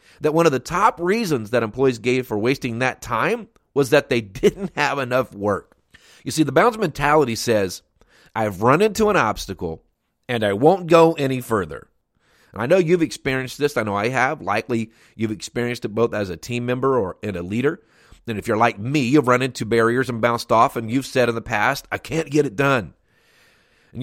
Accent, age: American, 30-49